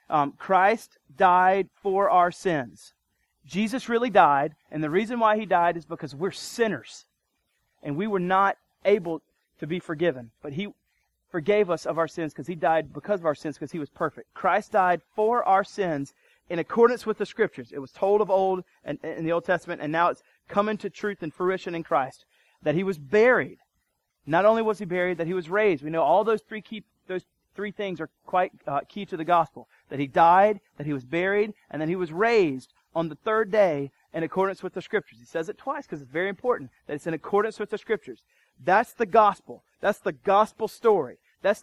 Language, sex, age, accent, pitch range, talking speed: English, male, 30-49, American, 160-205 Hz, 210 wpm